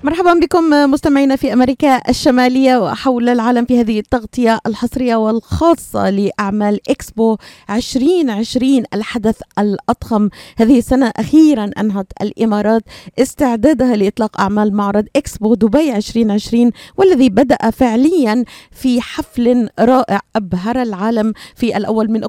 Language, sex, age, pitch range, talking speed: Arabic, female, 30-49, 210-260 Hz, 110 wpm